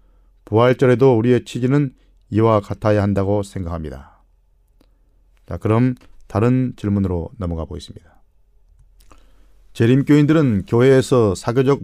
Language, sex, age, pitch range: Korean, male, 40-59, 80-125 Hz